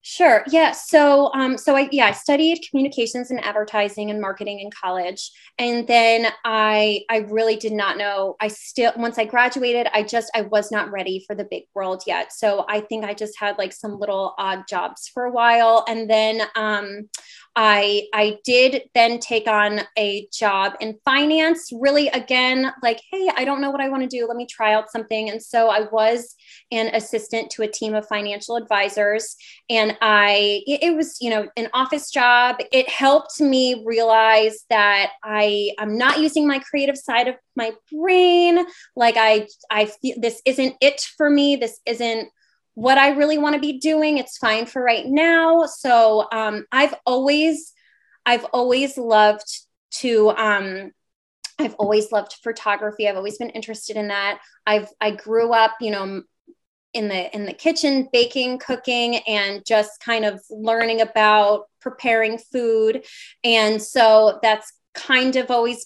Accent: American